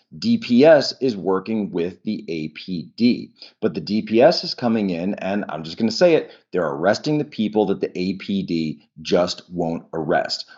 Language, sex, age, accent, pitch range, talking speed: English, male, 40-59, American, 90-115 Hz, 165 wpm